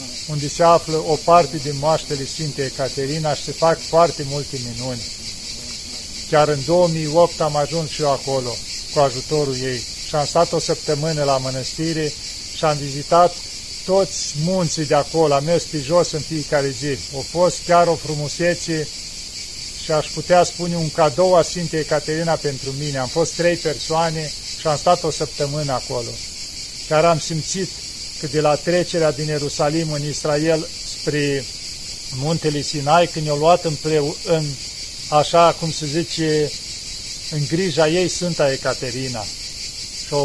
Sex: male